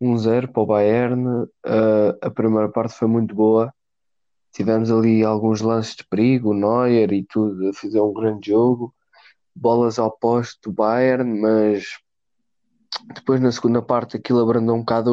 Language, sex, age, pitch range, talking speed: Portuguese, male, 20-39, 110-125 Hz, 165 wpm